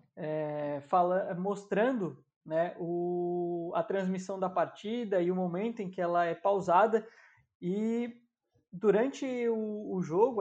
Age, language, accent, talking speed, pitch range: 20-39, Portuguese, Brazilian, 110 wpm, 180-215 Hz